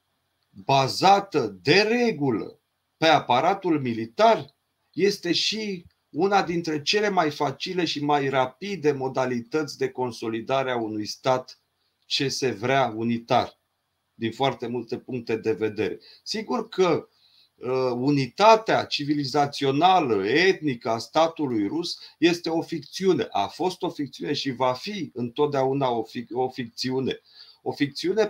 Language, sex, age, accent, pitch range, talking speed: Romanian, male, 40-59, native, 125-165 Hz, 120 wpm